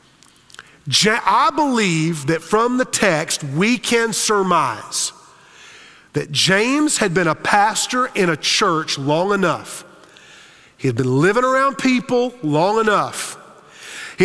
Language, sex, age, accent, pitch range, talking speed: English, male, 40-59, American, 165-220 Hz, 120 wpm